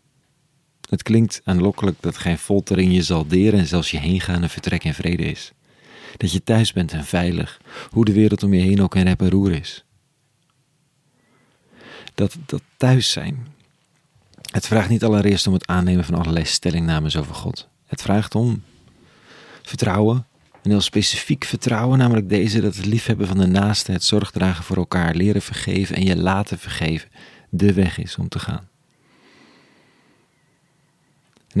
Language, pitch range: Dutch, 95-115 Hz